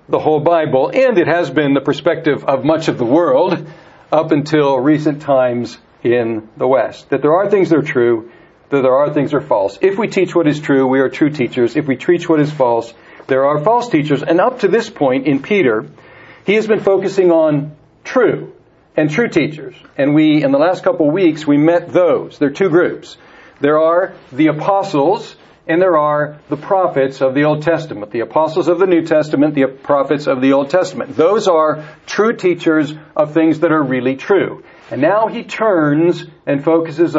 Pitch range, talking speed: 140-175 Hz, 205 wpm